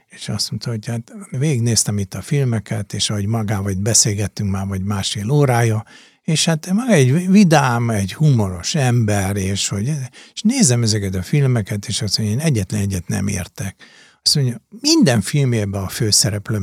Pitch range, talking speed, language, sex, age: 105-150 Hz, 170 wpm, Hungarian, male, 60-79